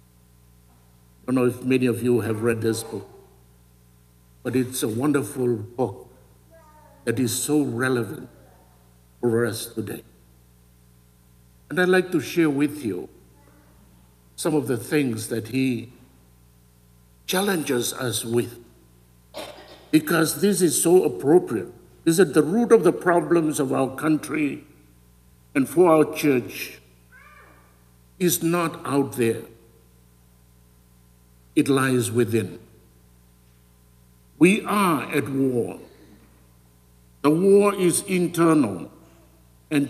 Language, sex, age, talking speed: English, male, 60-79, 110 wpm